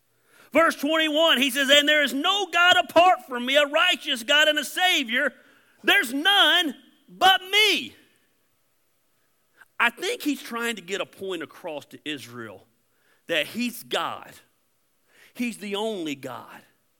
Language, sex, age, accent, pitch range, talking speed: English, male, 40-59, American, 200-300 Hz, 140 wpm